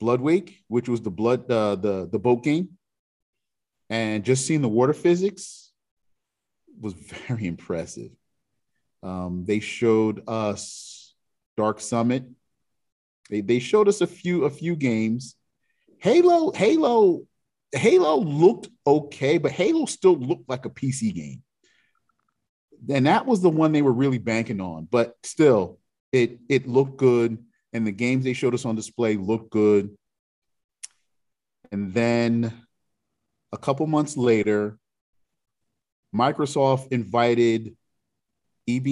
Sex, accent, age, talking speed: male, American, 40-59, 130 wpm